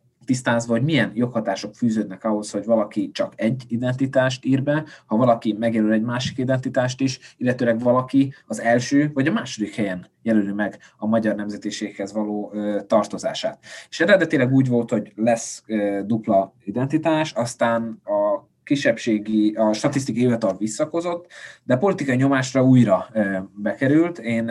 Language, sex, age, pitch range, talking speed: Hungarian, male, 20-39, 105-125 Hz, 140 wpm